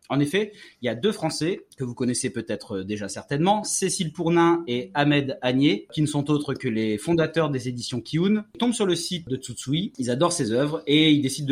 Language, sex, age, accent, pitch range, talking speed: French, male, 30-49, French, 130-165 Hz, 215 wpm